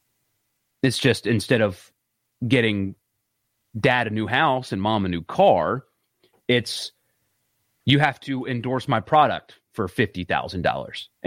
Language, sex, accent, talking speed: English, male, American, 120 wpm